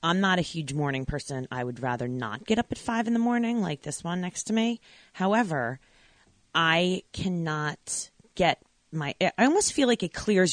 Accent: American